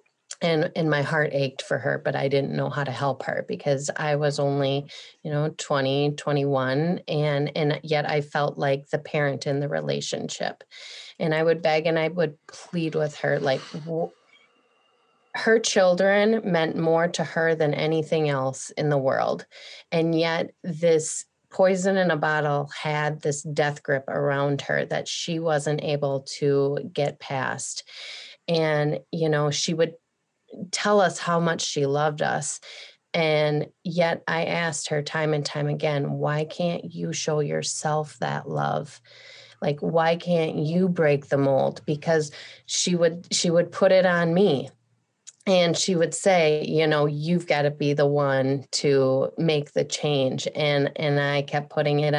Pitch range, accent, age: 145-170 Hz, American, 30-49